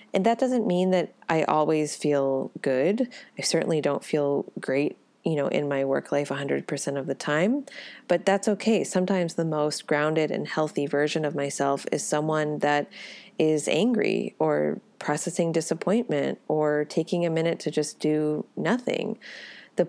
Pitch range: 145-185 Hz